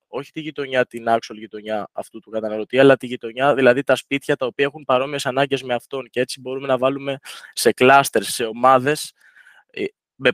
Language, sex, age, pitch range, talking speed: Greek, male, 20-39, 115-140 Hz, 185 wpm